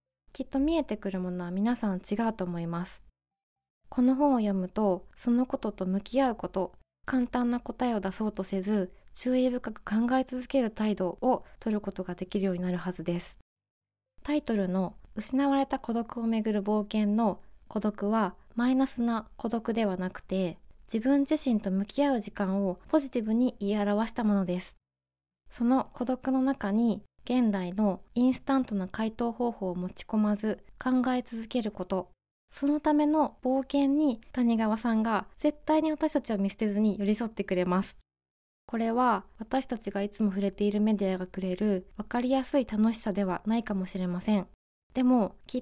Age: 20-39